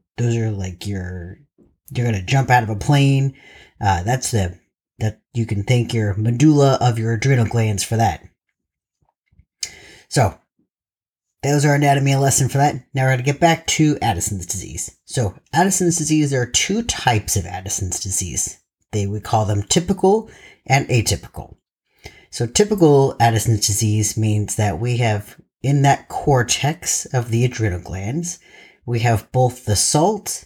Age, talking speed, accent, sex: 40-59, 160 wpm, American, male